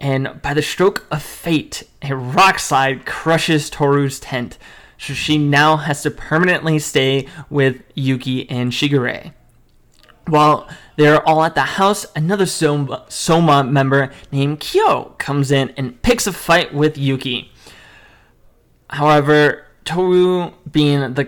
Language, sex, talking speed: English, male, 135 wpm